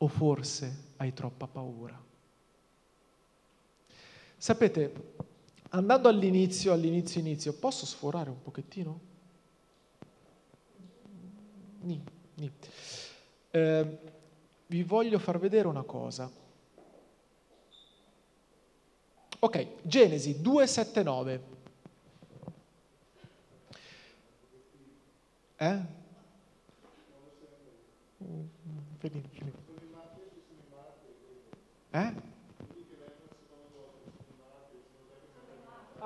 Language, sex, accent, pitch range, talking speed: Italian, male, native, 150-200 Hz, 50 wpm